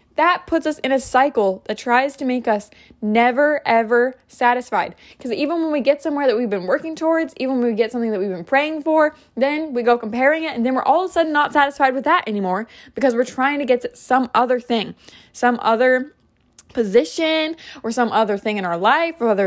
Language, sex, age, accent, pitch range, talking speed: English, female, 20-39, American, 230-285 Hz, 220 wpm